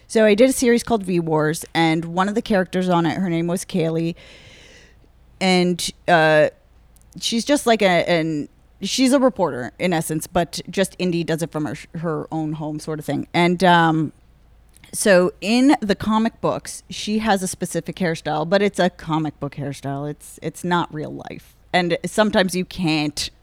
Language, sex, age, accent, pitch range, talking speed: English, female, 30-49, American, 155-185 Hz, 180 wpm